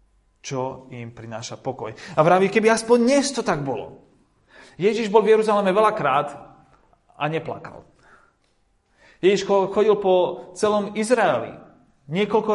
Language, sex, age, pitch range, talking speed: Slovak, male, 30-49, 110-165 Hz, 120 wpm